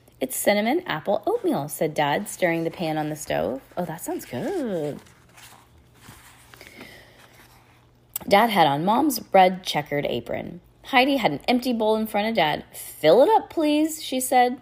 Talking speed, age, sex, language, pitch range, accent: 155 wpm, 20-39, female, English, 155-240 Hz, American